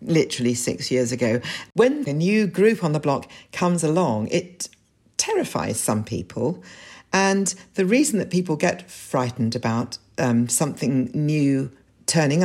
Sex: female